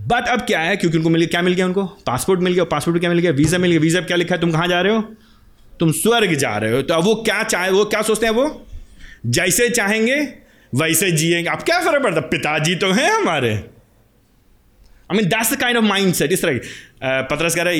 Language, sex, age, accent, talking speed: Hindi, male, 30-49, native, 230 wpm